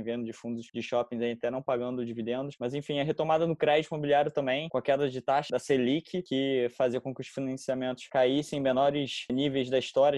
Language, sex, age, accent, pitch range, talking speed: Portuguese, male, 20-39, Brazilian, 130-150 Hz, 220 wpm